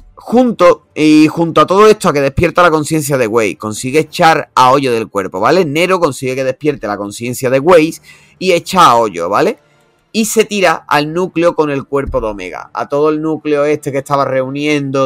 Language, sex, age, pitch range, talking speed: Spanish, male, 30-49, 120-165 Hz, 200 wpm